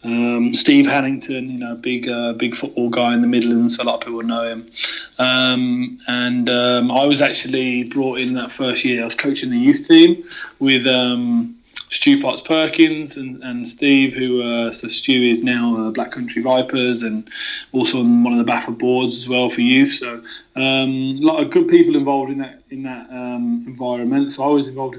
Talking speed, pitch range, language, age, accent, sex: 205 wpm, 120-155 Hz, English, 20-39, British, male